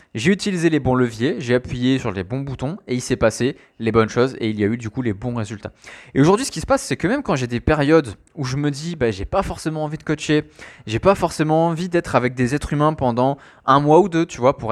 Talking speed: 285 wpm